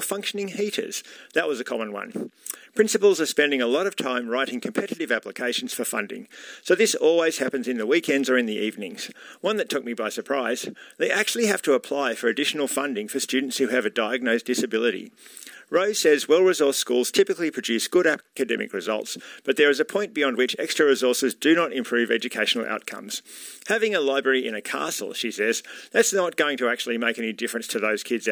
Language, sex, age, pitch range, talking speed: English, male, 50-69, 125-165 Hz, 195 wpm